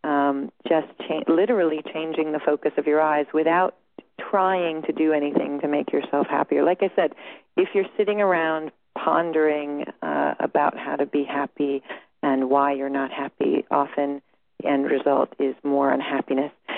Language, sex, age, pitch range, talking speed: English, female, 40-59, 145-175 Hz, 155 wpm